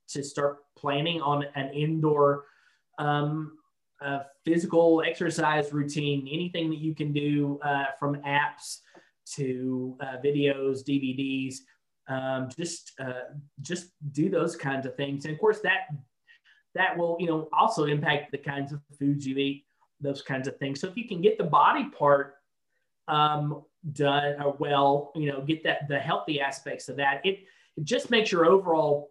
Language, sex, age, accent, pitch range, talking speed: English, male, 20-39, American, 140-160 Hz, 160 wpm